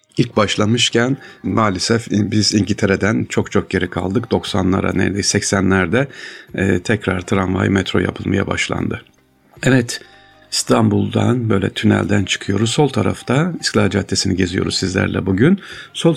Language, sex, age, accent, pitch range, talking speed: Turkish, male, 60-79, native, 95-115 Hz, 110 wpm